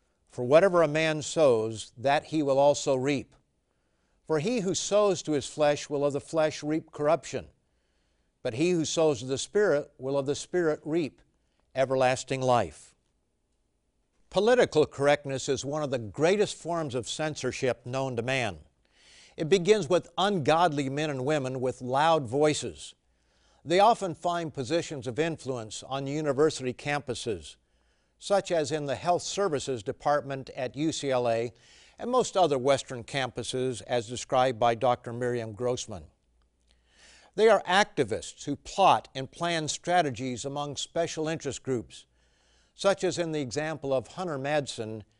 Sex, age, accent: male, 50-69, American